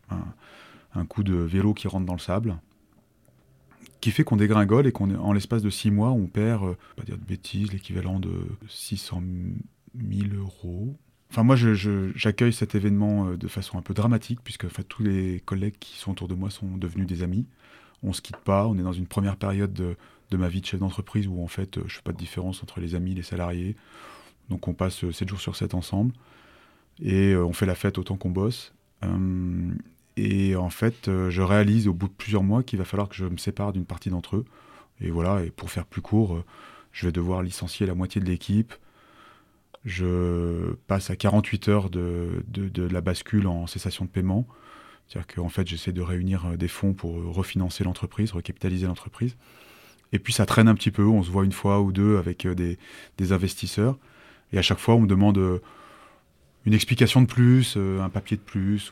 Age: 30-49